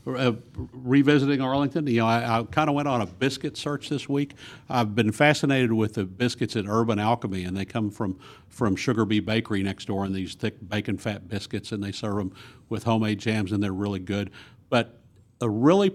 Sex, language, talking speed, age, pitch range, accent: male, English, 200 wpm, 50-69, 105-125 Hz, American